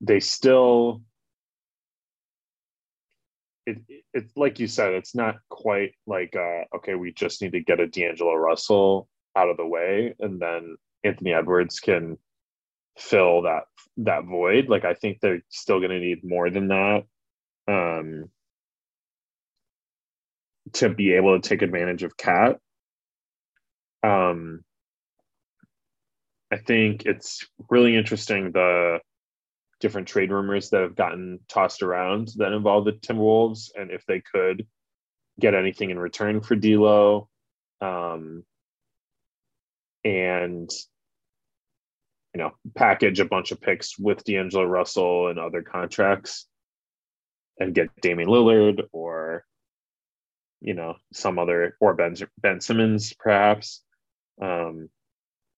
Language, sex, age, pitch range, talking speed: English, male, 20-39, 85-110 Hz, 125 wpm